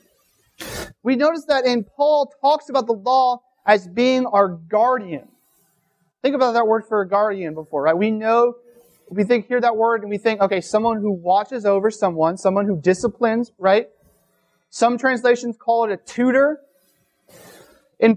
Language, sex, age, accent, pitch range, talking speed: English, male, 30-49, American, 190-245 Hz, 160 wpm